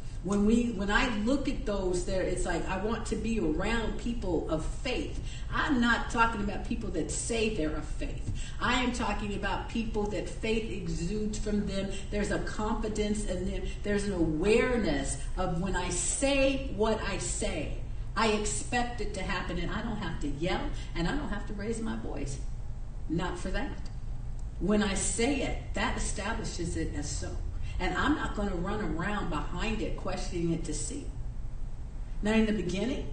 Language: English